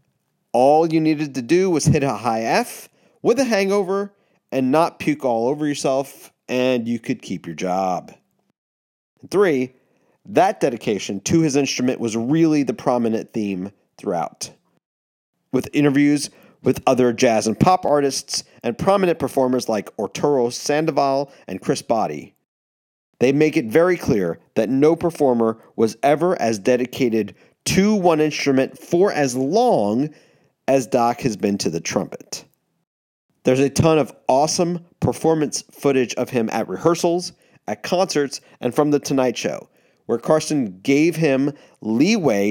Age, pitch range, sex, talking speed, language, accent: 40-59, 115-155 Hz, male, 145 wpm, English, American